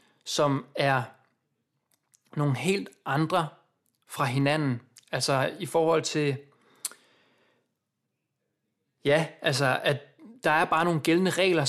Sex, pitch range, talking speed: male, 145-175 Hz, 105 wpm